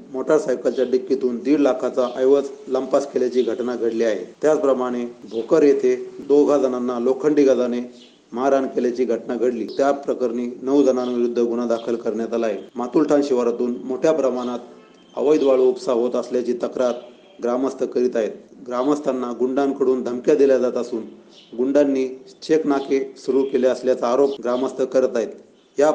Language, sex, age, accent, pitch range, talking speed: Marathi, male, 40-59, native, 120-140 Hz, 135 wpm